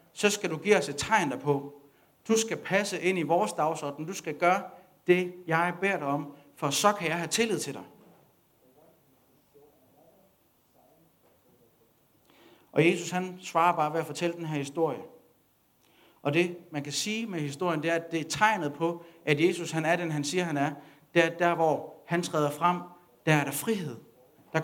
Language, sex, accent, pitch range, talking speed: Danish, male, native, 150-180 Hz, 190 wpm